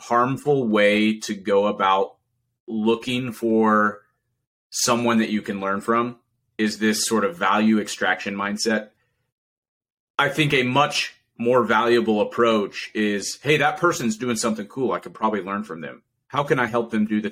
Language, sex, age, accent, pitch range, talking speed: English, male, 30-49, American, 100-120 Hz, 165 wpm